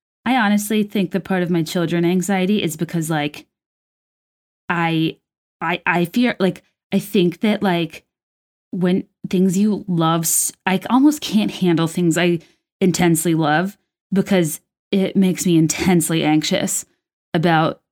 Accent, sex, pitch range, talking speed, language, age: American, female, 170-215 Hz, 135 wpm, English, 20-39